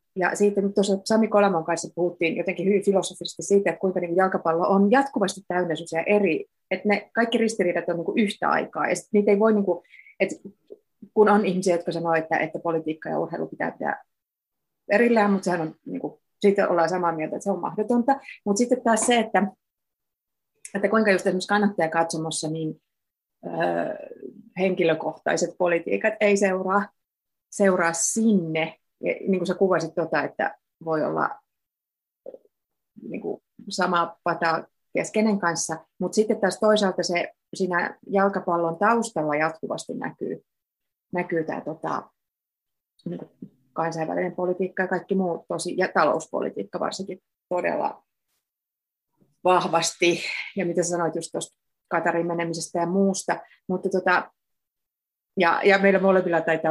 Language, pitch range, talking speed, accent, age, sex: Finnish, 170-205 Hz, 130 wpm, native, 30-49, female